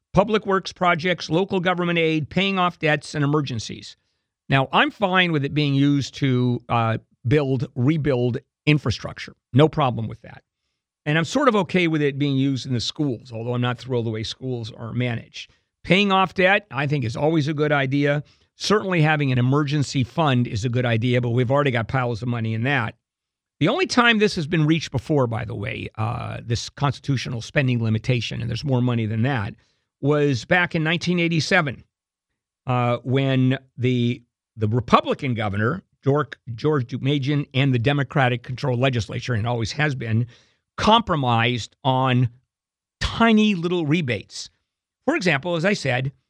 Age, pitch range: 50-69, 120-170 Hz